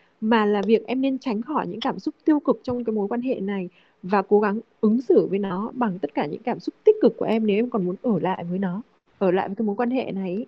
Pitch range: 205-255 Hz